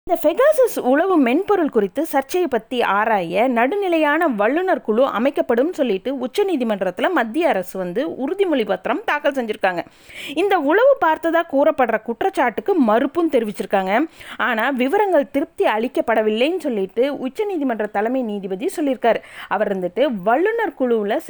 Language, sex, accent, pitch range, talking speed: Tamil, female, native, 215-305 Hz, 115 wpm